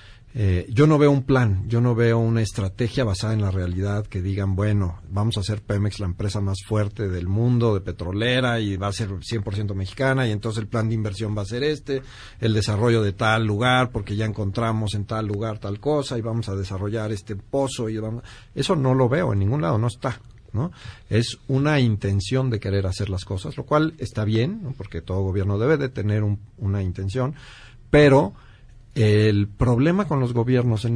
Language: Spanish